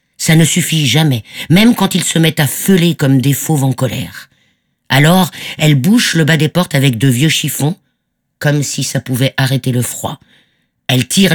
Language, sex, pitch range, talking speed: French, female, 130-160 Hz, 190 wpm